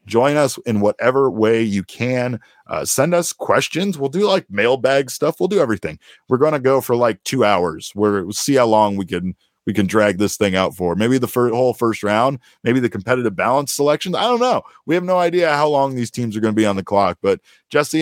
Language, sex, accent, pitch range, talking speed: English, male, American, 100-125 Hz, 240 wpm